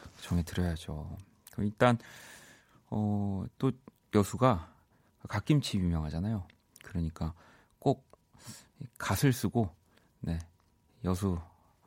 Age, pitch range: 40-59, 85-120 Hz